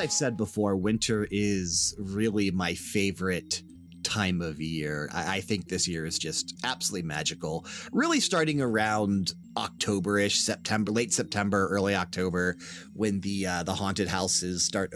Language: English